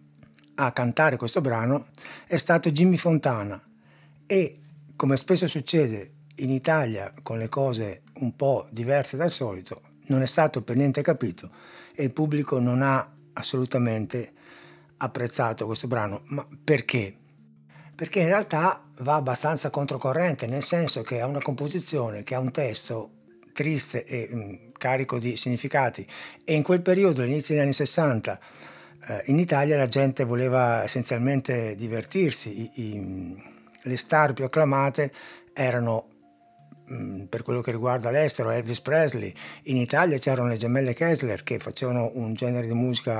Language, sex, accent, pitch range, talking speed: Italian, male, native, 115-145 Hz, 140 wpm